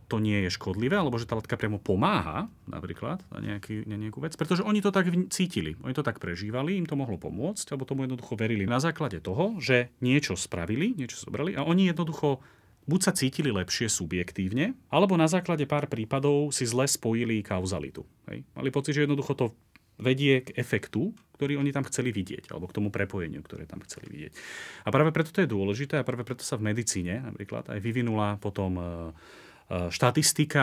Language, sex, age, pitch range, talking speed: Slovak, male, 30-49, 105-145 Hz, 190 wpm